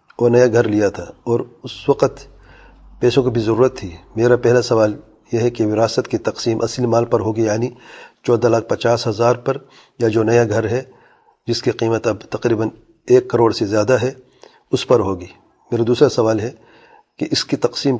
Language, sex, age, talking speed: English, male, 40-59, 195 wpm